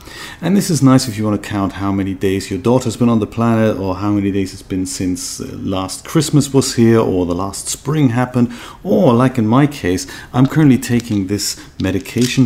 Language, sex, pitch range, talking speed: English, male, 100-125 Hz, 210 wpm